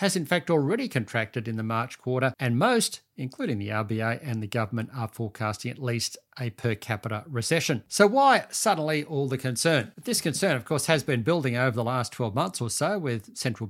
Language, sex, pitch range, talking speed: English, male, 115-155 Hz, 205 wpm